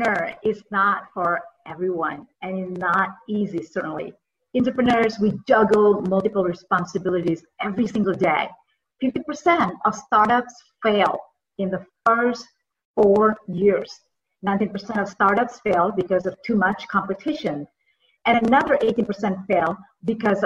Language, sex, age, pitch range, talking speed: English, female, 40-59, 190-250 Hz, 120 wpm